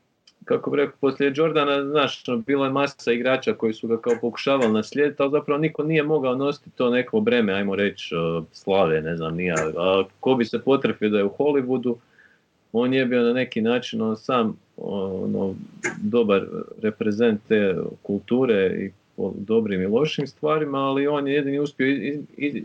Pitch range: 100-145 Hz